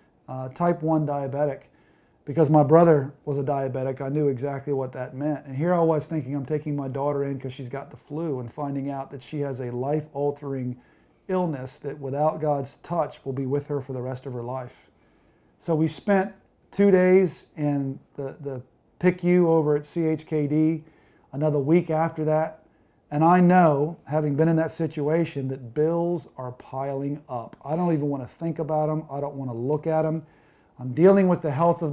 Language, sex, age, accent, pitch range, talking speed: English, male, 40-59, American, 140-165 Hz, 195 wpm